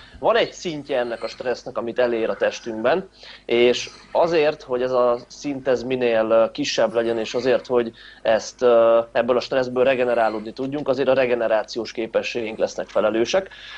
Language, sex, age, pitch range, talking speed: Hungarian, male, 30-49, 115-140 Hz, 150 wpm